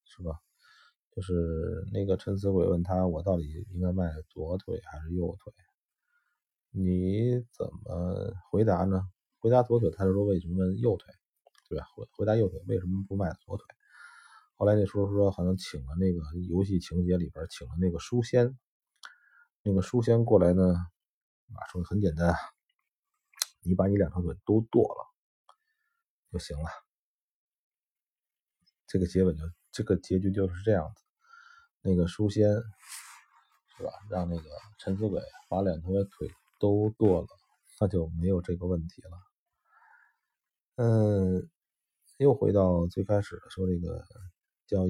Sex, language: male, Chinese